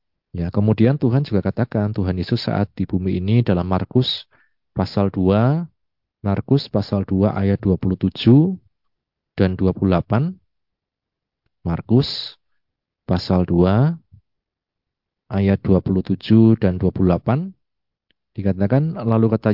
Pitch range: 95-115 Hz